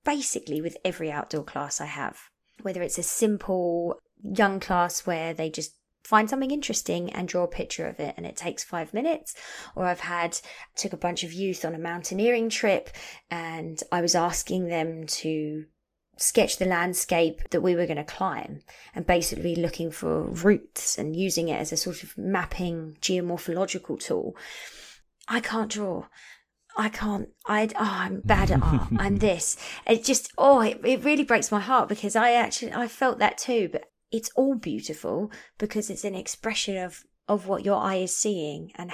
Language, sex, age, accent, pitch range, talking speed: English, female, 20-39, British, 175-225 Hz, 180 wpm